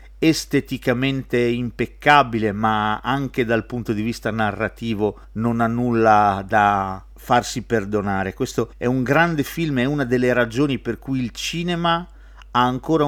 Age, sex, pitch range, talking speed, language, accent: 40-59, male, 105-135 Hz, 140 wpm, Italian, native